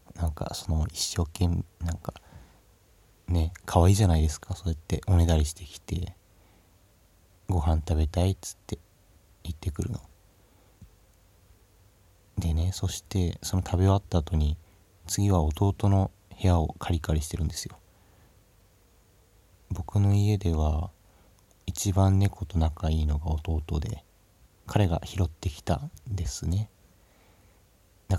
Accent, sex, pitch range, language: native, male, 85-100 Hz, Japanese